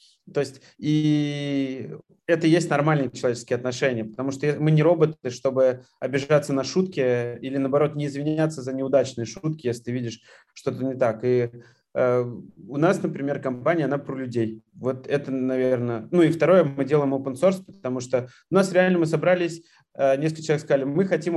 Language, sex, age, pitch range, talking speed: Russian, male, 20-39, 125-150 Hz, 175 wpm